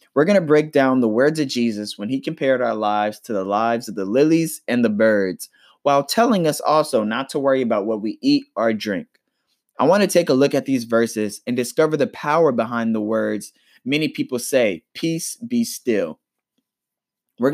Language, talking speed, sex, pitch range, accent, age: English, 200 wpm, male, 115-155 Hz, American, 20-39